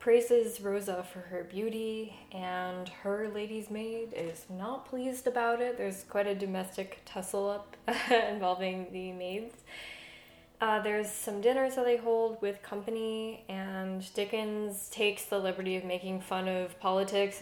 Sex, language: female, English